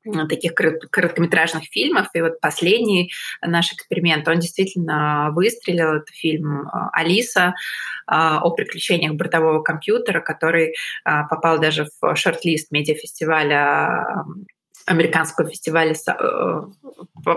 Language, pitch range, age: Russian, 160-190 Hz, 20-39